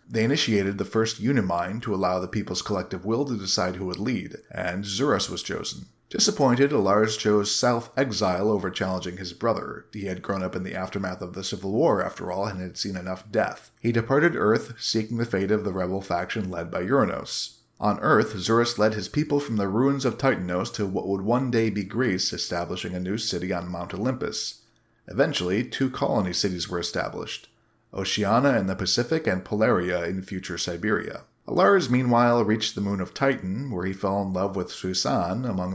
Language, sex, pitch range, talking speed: English, male, 95-120 Hz, 190 wpm